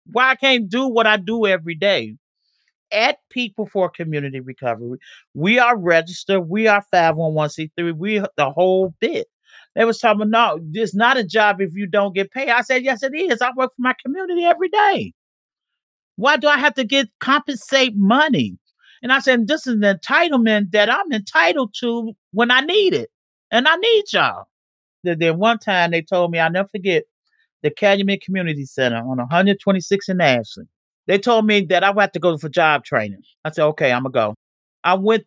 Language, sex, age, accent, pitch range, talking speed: English, male, 40-59, American, 170-240 Hz, 195 wpm